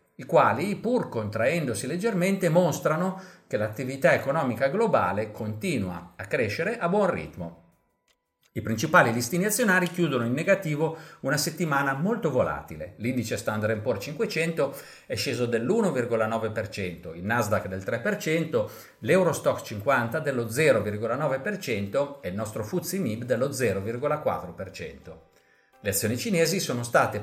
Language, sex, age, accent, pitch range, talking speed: Italian, male, 50-69, native, 110-165 Hz, 115 wpm